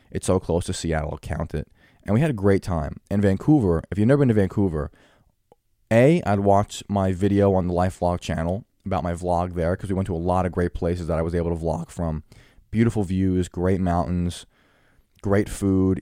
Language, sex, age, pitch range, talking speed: English, male, 20-39, 90-105 Hz, 215 wpm